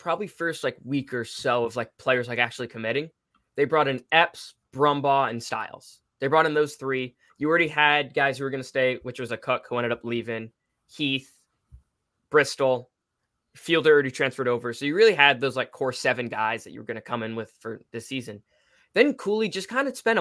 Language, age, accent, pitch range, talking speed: English, 20-39, American, 115-145 Hz, 215 wpm